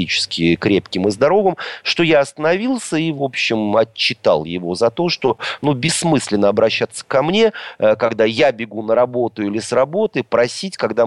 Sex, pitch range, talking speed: male, 105-160 Hz, 155 wpm